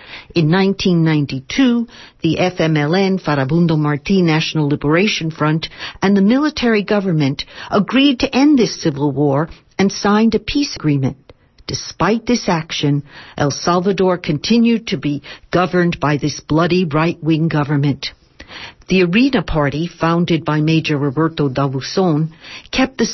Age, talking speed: 60-79, 125 wpm